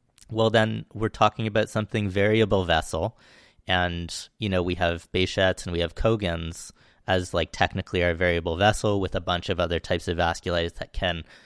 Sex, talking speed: male, 180 wpm